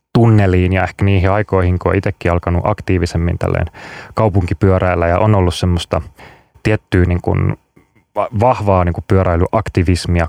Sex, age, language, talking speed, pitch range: male, 20-39, Finnish, 130 wpm, 90-105 Hz